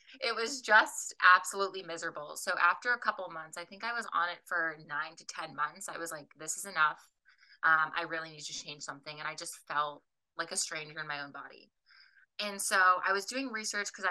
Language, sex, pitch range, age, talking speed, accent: English, female, 155-190 Hz, 20-39, 225 wpm, American